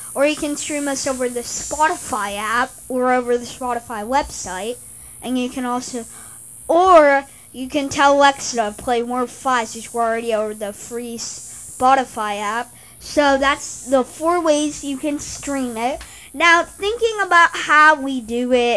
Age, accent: 20-39, American